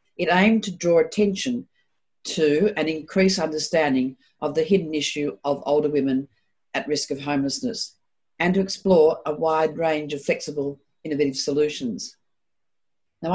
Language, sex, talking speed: English, female, 140 wpm